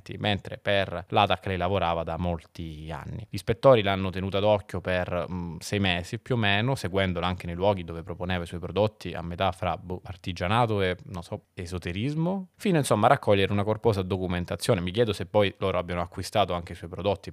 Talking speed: 195 wpm